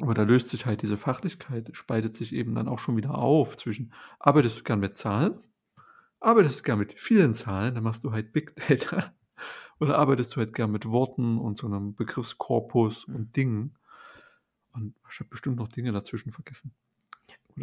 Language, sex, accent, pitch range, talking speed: German, male, German, 115-145 Hz, 185 wpm